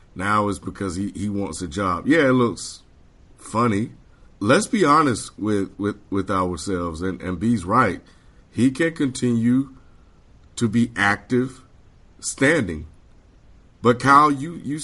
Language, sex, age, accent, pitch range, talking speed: English, male, 50-69, American, 95-120 Hz, 140 wpm